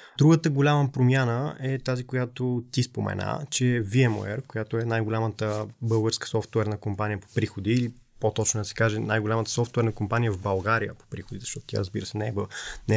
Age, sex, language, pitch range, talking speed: 20-39, male, Bulgarian, 110-130 Hz, 160 wpm